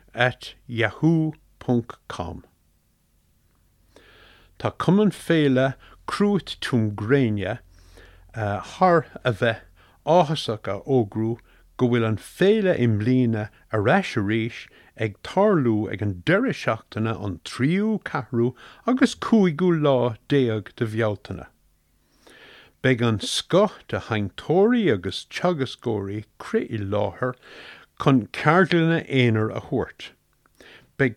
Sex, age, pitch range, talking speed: male, 60-79, 105-160 Hz, 85 wpm